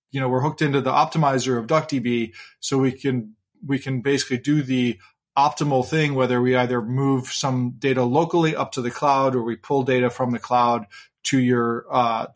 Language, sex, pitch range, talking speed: English, male, 130-150 Hz, 195 wpm